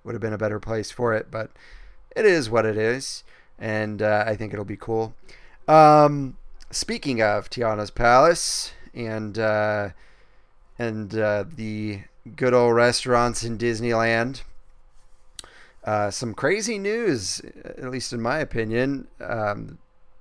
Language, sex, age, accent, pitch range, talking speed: English, male, 30-49, American, 110-130 Hz, 135 wpm